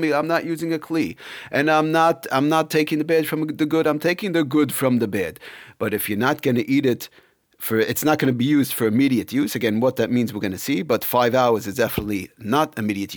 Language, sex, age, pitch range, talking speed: English, male, 40-59, 115-145 Hz, 250 wpm